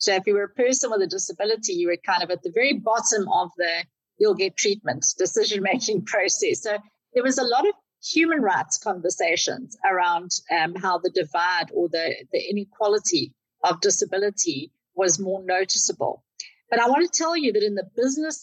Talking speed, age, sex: 185 wpm, 50-69, female